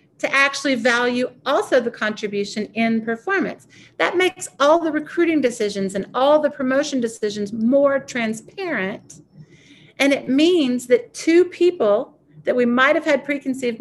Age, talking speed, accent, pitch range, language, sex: 50-69, 140 wpm, American, 195-265 Hz, English, female